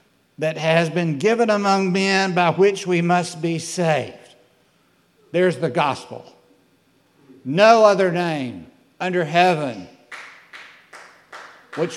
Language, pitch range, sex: English, 115-175 Hz, male